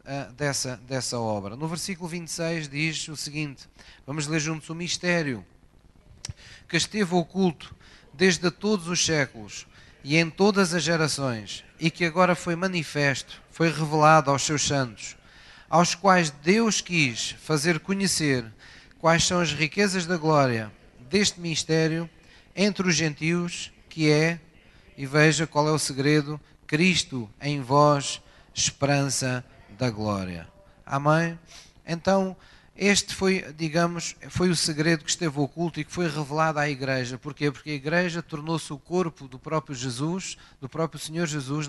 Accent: Portuguese